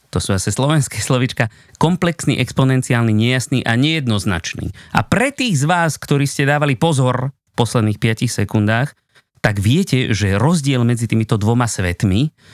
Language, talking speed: Slovak, 150 wpm